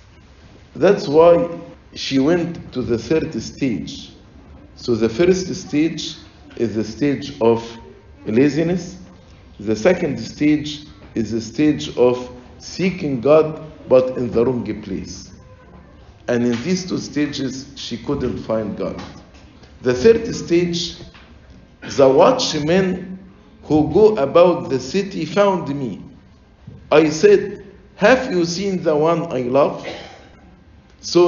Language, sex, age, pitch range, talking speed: English, male, 50-69, 115-175 Hz, 120 wpm